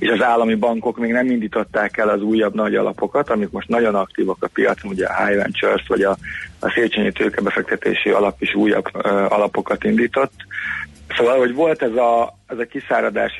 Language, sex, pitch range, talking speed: Hungarian, male, 105-120 Hz, 180 wpm